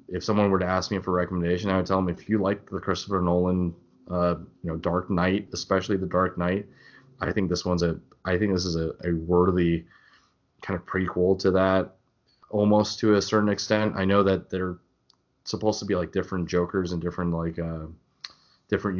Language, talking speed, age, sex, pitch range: English, 205 wpm, 20-39, male, 85-95 Hz